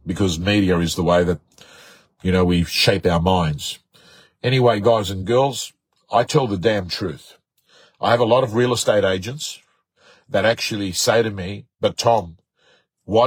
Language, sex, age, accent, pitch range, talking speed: English, male, 50-69, Australian, 145-215 Hz, 165 wpm